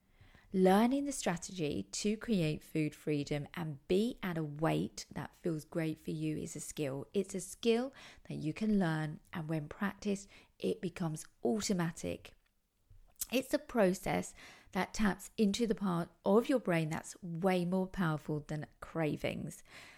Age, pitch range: 40-59, 160-210 Hz